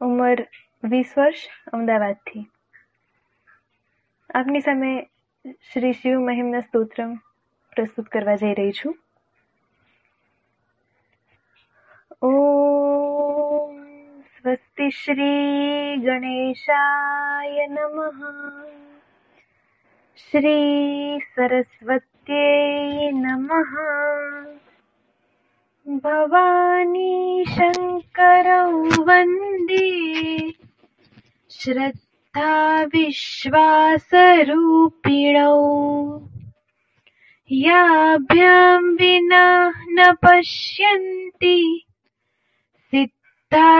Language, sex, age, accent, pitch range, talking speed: Gujarati, female, 20-39, native, 270-335 Hz, 30 wpm